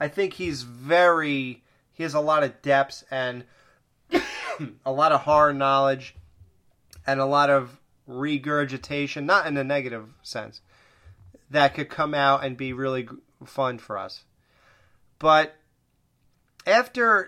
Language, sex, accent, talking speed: English, male, American, 130 wpm